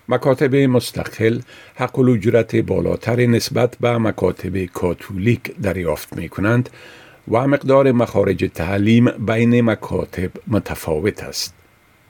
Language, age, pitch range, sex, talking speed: Persian, 50-69, 95-120 Hz, male, 100 wpm